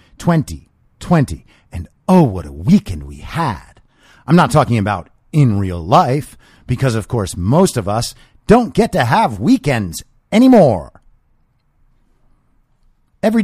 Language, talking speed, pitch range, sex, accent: English, 125 wpm, 95-135 Hz, male, American